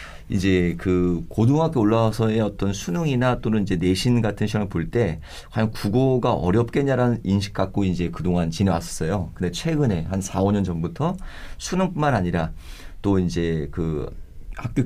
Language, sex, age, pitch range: Korean, male, 40-59, 90-120 Hz